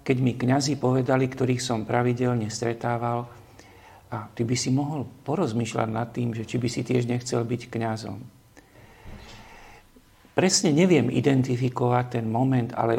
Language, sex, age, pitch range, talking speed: Slovak, male, 50-69, 115-130 Hz, 140 wpm